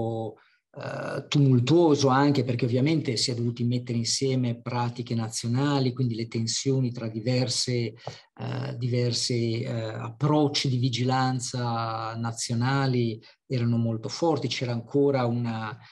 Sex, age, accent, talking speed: male, 40-59, native, 110 wpm